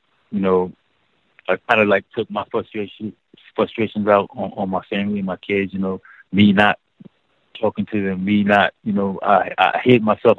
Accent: American